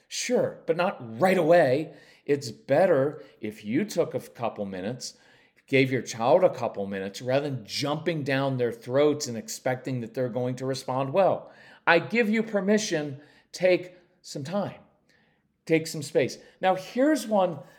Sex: male